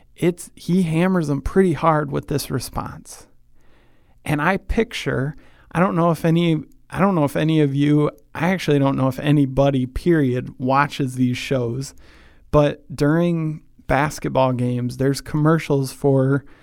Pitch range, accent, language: 125-150 Hz, American, English